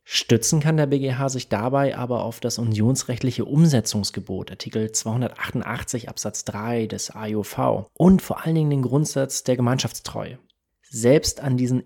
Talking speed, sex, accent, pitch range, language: 140 wpm, male, German, 110-140 Hz, German